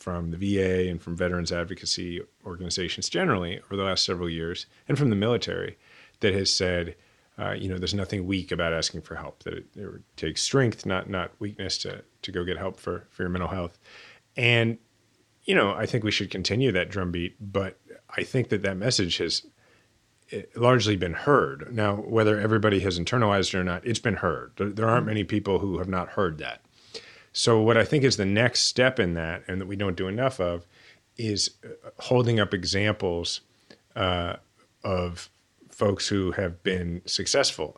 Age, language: 30-49, English